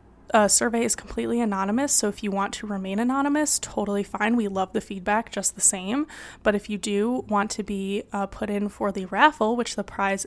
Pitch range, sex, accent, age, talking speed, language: 195-225 Hz, female, American, 20-39, 215 wpm, English